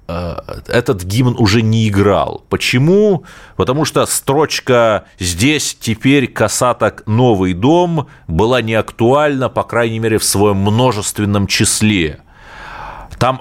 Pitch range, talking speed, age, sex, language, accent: 80-115 Hz, 105 wpm, 30-49, male, Russian, native